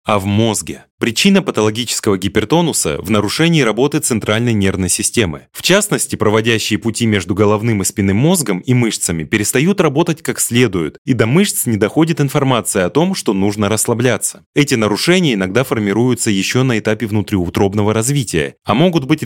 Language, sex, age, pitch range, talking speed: Russian, male, 30-49, 105-140 Hz, 155 wpm